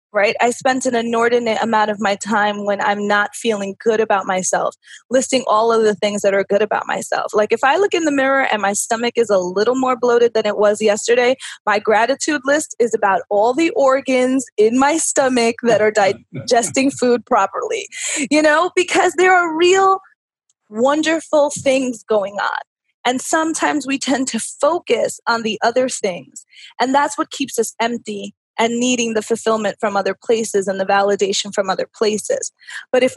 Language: English